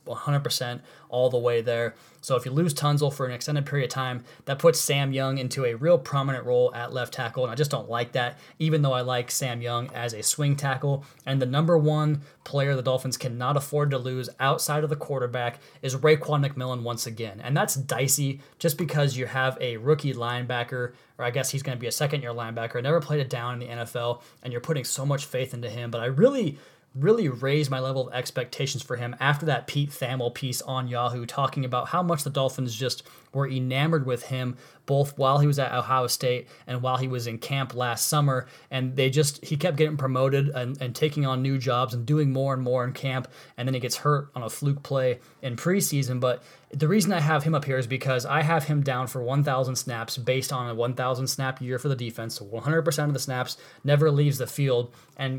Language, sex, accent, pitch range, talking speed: English, male, American, 125-145 Hz, 225 wpm